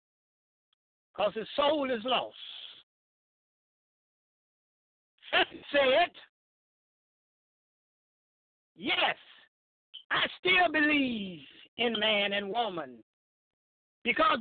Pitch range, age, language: 245-340 Hz, 50-69, English